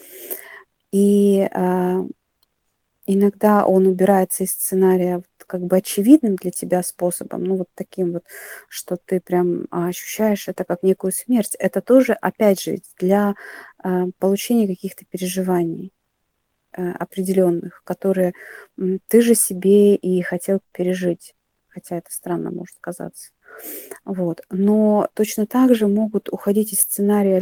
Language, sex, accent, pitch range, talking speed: Russian, female, native, 185-215 Hz, 125 wpm